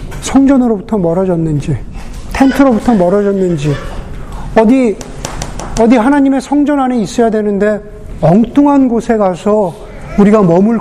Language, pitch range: Korean, 160-215 Hz